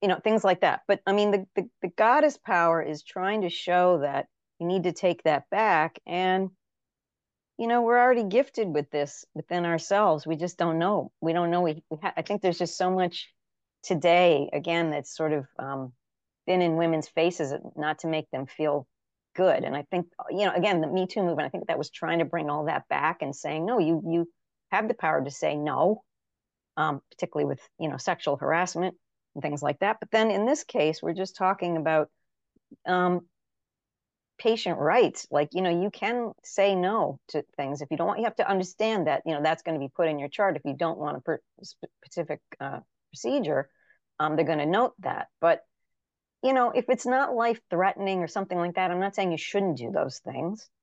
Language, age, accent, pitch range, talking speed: English, 40-59, American, 160-195 Hz, 210 wpm